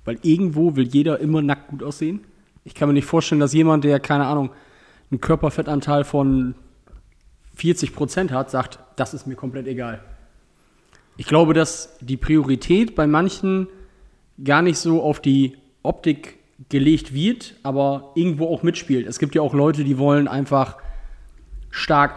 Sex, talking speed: male, 155 wpm